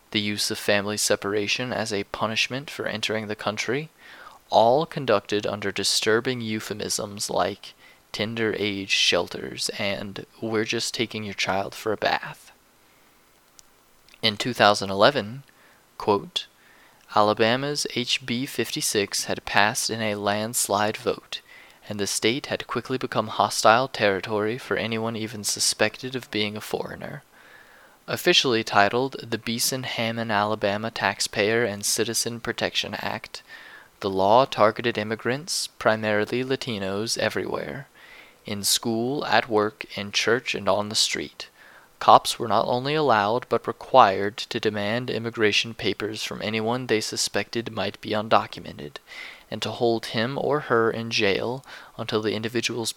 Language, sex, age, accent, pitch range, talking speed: English, male, 20-39, American, 105-120 Hz, 130 wpm